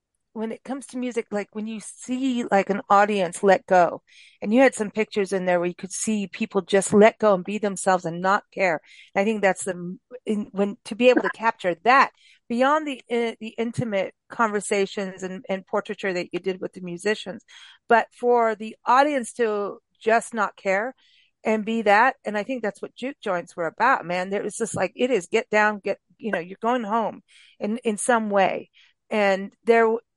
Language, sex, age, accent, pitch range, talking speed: English, female, 40-59, American, 190-230 Hz, 205 wpm